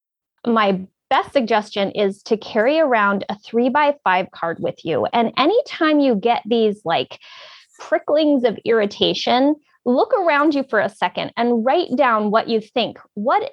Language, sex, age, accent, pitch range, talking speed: English, female, 20-39, American, 210-295 Hz, 160 wpm